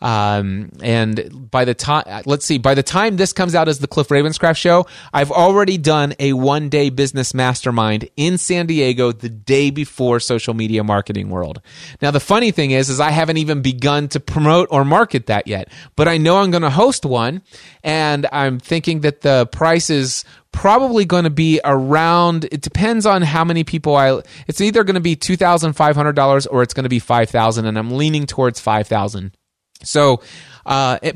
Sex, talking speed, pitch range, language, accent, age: male, 180 wpm, 130-175 Hz, English, American, 30-49